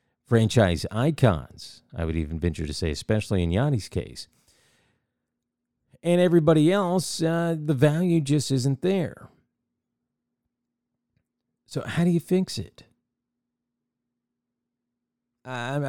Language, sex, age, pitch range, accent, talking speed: English, male, 50-69, 105-130 Hz, American, 105 wpm